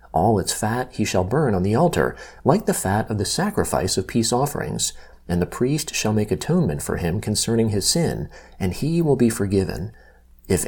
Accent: American